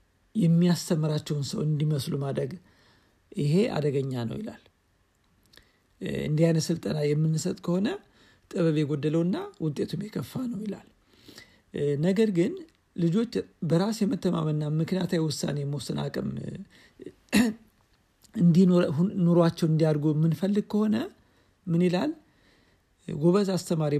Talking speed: 95 wpm